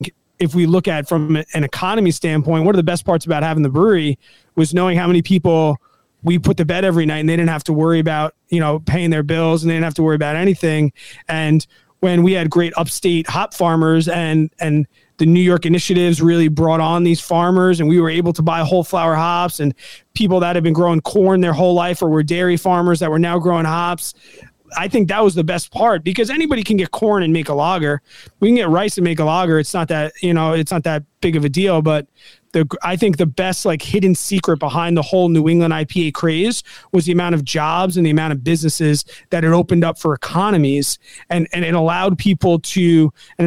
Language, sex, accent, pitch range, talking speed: English, male, American, 160-180 Hz, 240 wpm